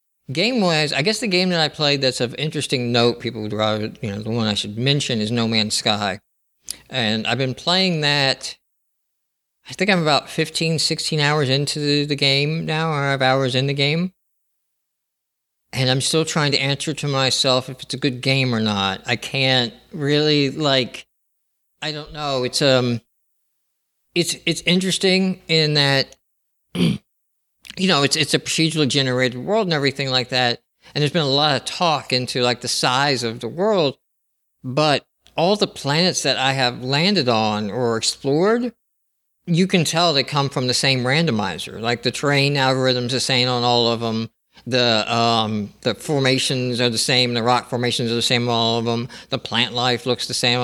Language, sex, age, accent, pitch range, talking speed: English, male, 50-69, American, 120-150 Hz, 185 wpm